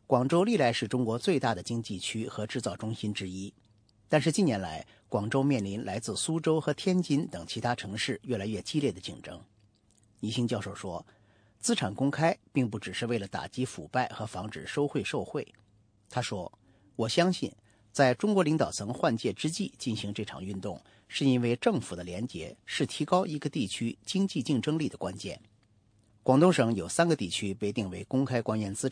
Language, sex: English, male